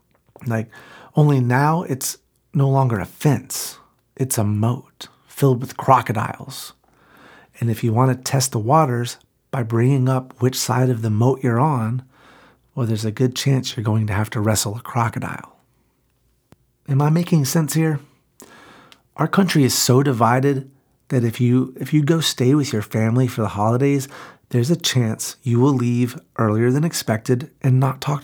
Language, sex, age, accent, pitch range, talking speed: English, male, 40-59, American, 120-140 Hz, 170 wpm